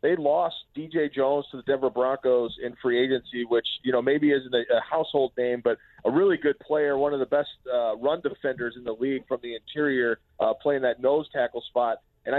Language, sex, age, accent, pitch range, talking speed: English, male, 40-59, American, 120-145 Hz, 215 wpm